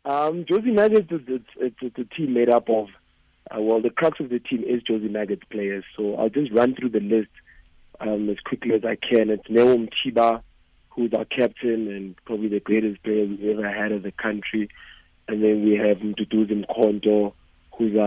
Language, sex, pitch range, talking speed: English, male, 105-120 Hz, 200 wpm